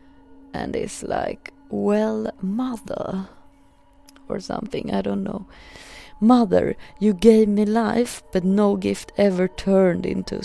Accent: native